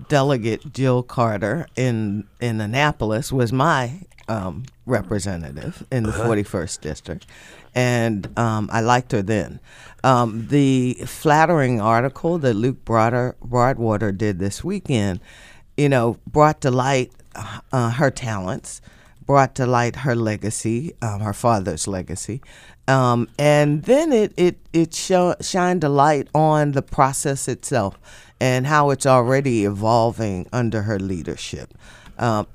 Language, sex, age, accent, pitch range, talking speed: English, female, 50-69, American, 110-135 Hz, 130 wpm